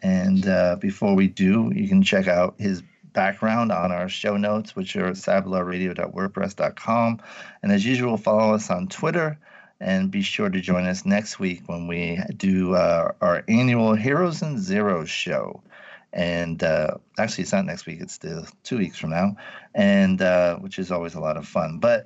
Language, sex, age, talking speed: English, male, 50-69, 180 wpm